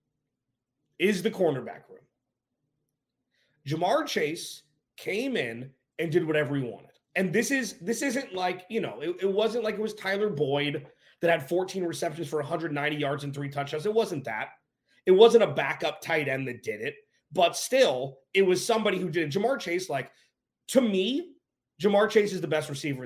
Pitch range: 140-200 Hz